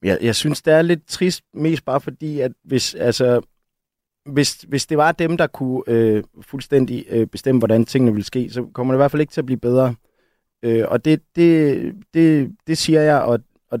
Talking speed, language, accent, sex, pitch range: 215 wpm, Danish, native, male, 115-150 Hz